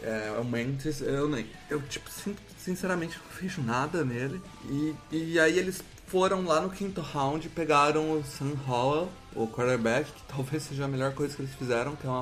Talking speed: 195 wpm